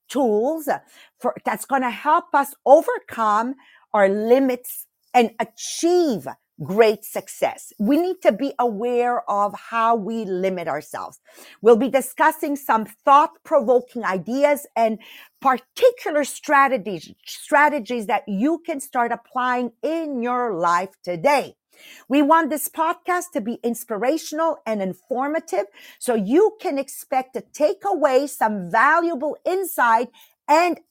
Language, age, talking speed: English, 50-69, 125 wpm